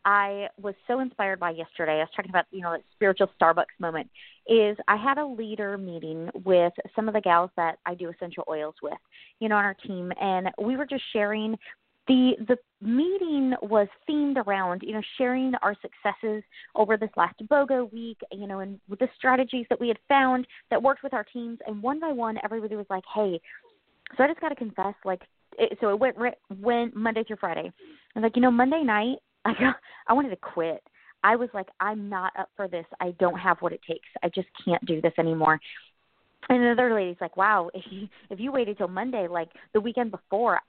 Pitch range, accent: 190-255 Hz, American